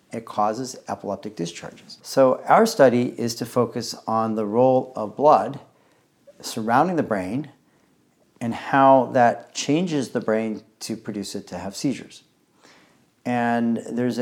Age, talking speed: 40-59, 135 wpm